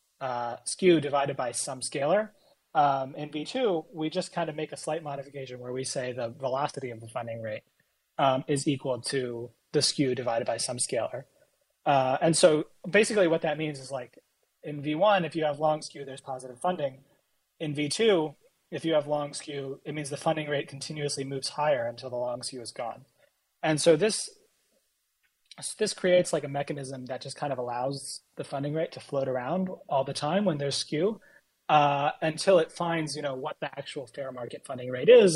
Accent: American